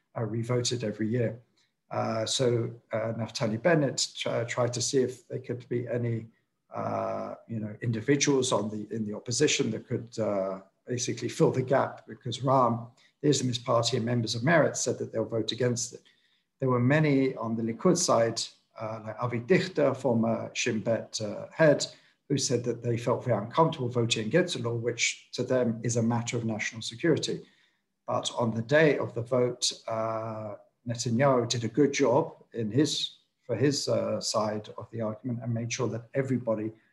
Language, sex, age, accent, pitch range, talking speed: English, male, 50-69, British, 115-130 Hz, 180 wpm